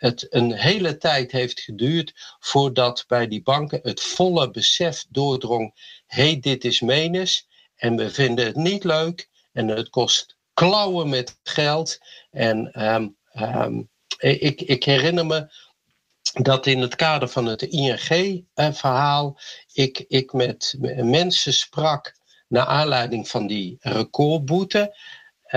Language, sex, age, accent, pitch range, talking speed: Dutch, male, 50-69, Dutch, 125-170 Hz, 130 wpm